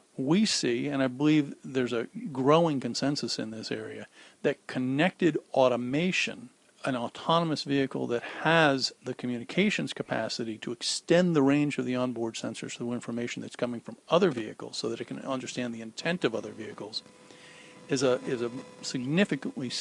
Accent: American